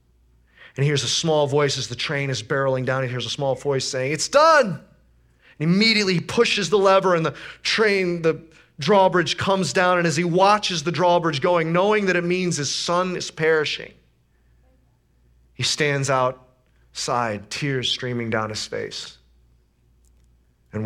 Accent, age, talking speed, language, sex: American, 30-49, 160 wpm, English, male